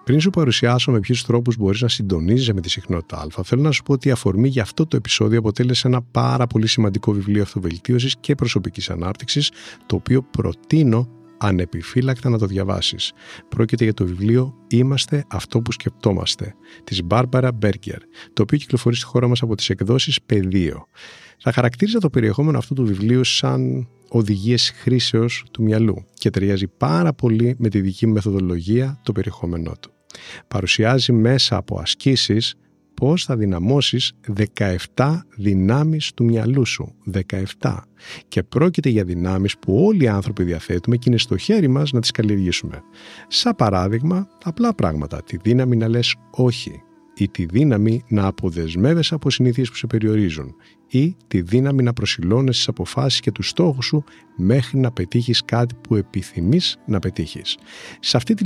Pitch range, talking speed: 100-130 Hz, 160 wpm